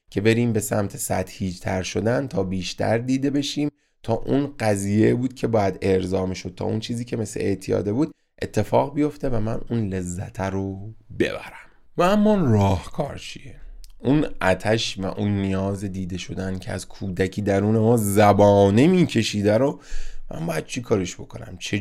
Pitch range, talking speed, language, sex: 95-125 Hz, 170 wpm, Persian, male